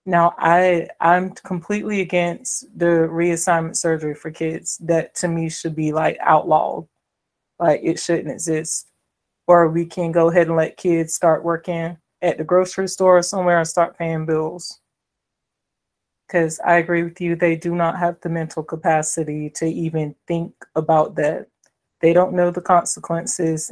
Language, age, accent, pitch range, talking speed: English, 20-39, American, 160-175 Hz, 160 wpm